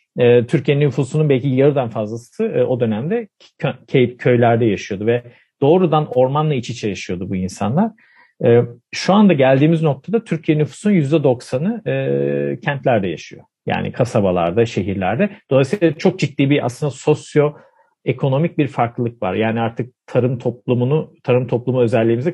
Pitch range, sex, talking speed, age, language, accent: 115-145 Hz, male, 125 wpm, 50-69, Turkish, native